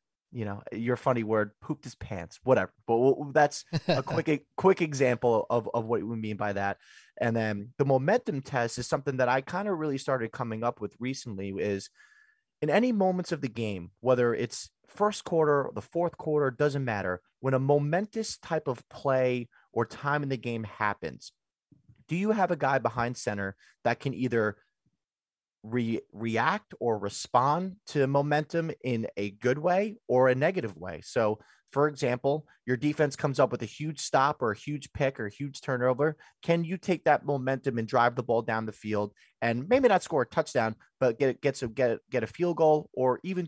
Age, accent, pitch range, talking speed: 30-49, American, 115-150 Hz, 190 wpm